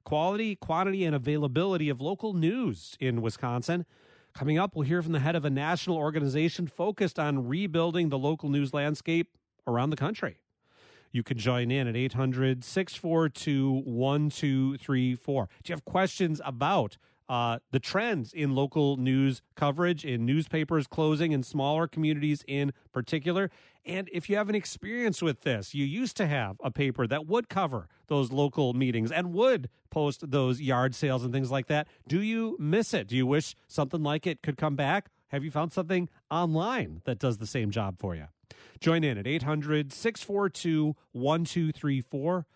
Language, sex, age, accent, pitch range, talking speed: English, male, 40-59, American, 130-170 Hz, 165 wpm